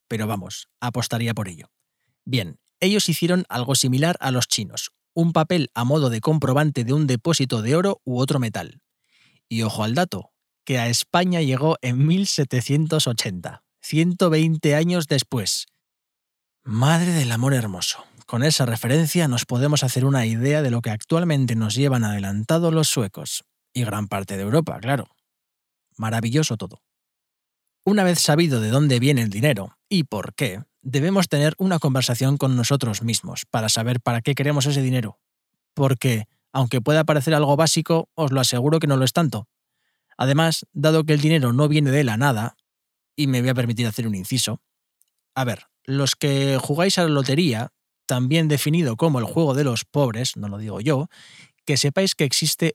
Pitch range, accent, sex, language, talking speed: 120-155 Hz, Spanish, male, Spanish, 170 wpm